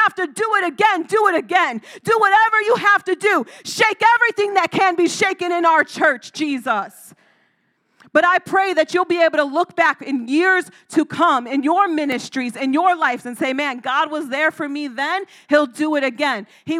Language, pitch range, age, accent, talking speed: English, 310-415 Hz, 40-59, American, 205 wpm